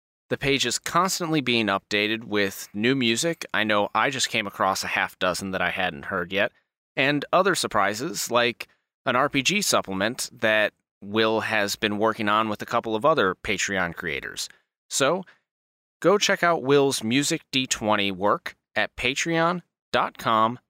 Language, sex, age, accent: English, male, 30-49, American